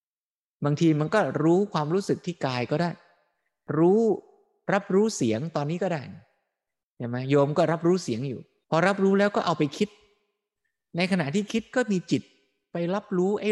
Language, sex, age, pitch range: Thai, male, 20-39, 130-190 Hz